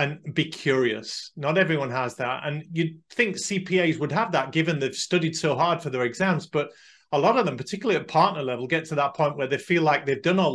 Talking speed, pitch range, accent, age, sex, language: 240 wpm, 125-160 Hz, British, 40-59, male, English